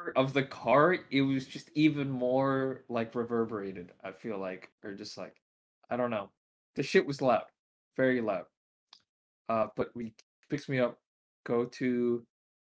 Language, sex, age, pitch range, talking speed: English, male, 20-39, 110-140 Hz, 155 wpm